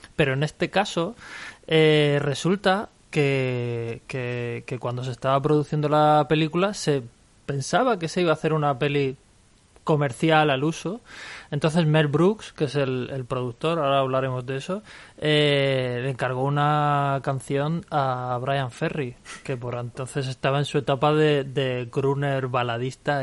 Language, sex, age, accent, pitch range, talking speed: Spanish, male, 20-39, Spanish, 130-150 Hz, 150 wpm